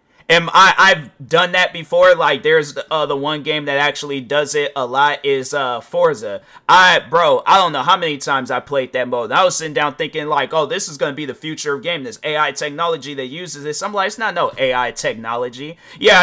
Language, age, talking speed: English, 30-49, 235 wpm